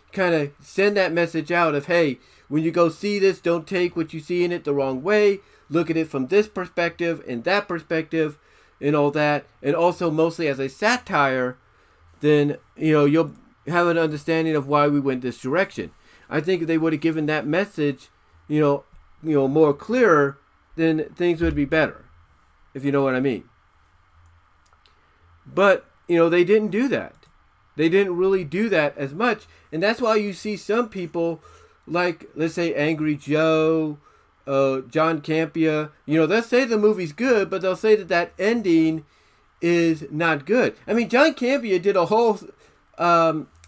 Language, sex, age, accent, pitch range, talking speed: English, male, 40-59, American, 145-195 Hz, 180 wpm